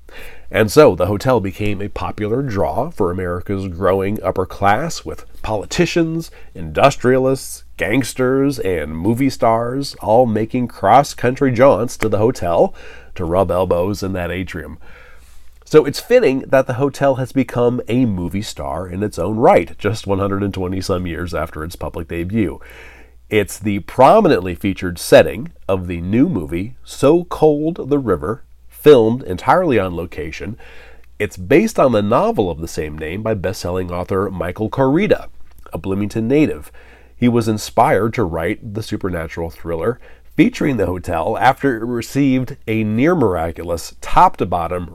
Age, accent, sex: 40-59, American, male